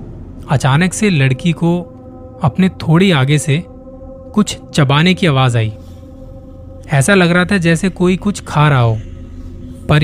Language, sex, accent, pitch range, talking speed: Hindi, male, native, 90-150 Hz, 145 wpm